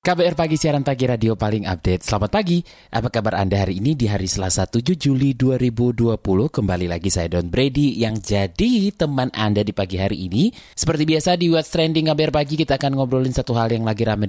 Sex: male